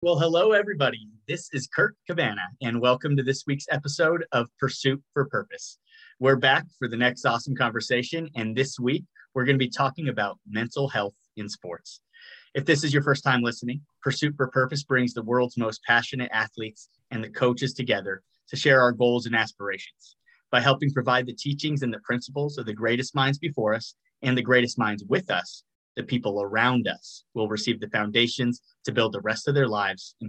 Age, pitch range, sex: 30-49, 110-140 Hz, male